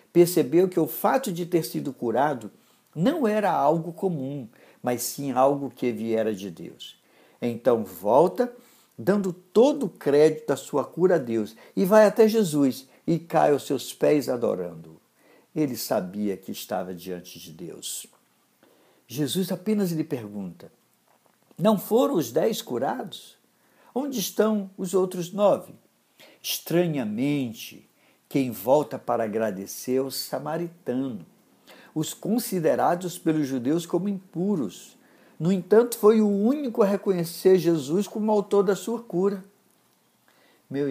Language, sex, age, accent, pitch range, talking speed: Portuguese, male, 60-79, Brazilian, 125-195 Hz, 130 wpm